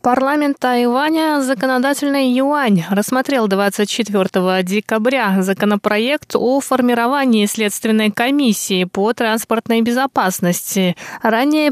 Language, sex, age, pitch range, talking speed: Russian, female, 20-39, 195-245 Hz, 80 wpm